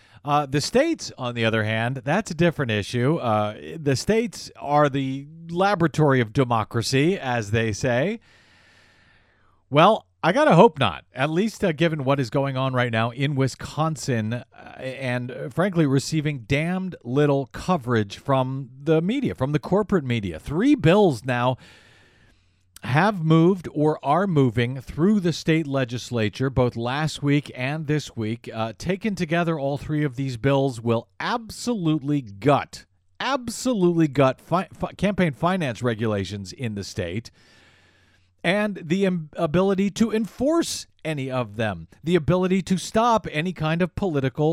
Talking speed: 150 wpm